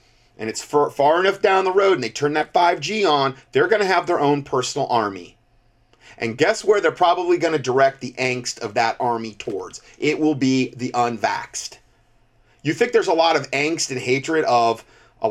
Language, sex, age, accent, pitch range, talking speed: English, male, 30-49, American, 120-155 Hz, 200 wpm